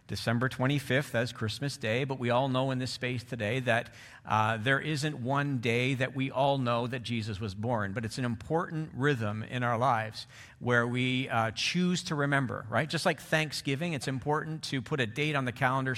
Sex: male